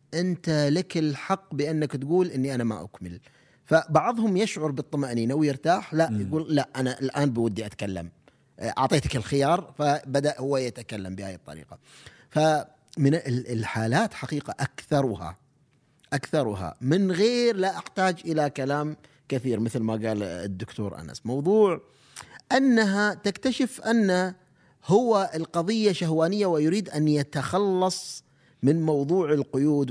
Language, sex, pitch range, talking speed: Arabic, male, 120-175 Hz, 115 wpm